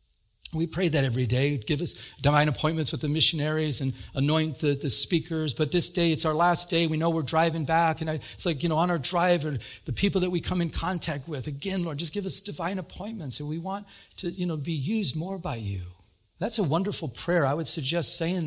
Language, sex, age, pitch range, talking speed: English, male, 40-59, 135-170 Hz, 235 wpm